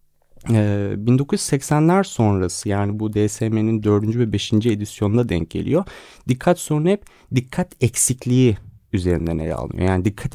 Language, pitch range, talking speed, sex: Turkish, 95-125 Hz, 120 wpm, male